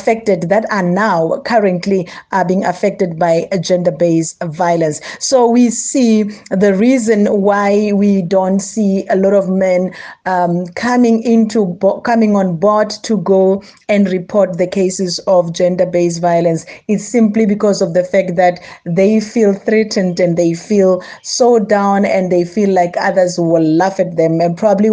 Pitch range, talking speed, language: 180-215 Hz, 160 wpm, English